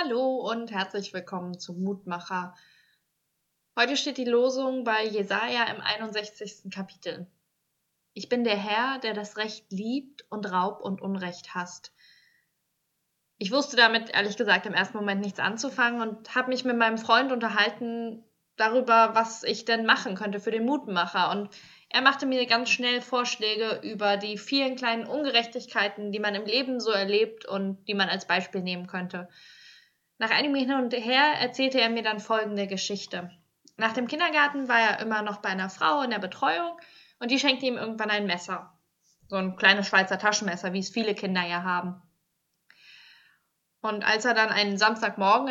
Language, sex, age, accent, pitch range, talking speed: German, female, 20-39, German, 190-240 Hz, 165 wpm